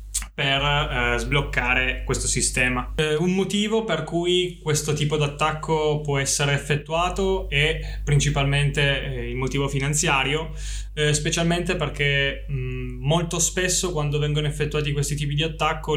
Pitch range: 135-155 Hz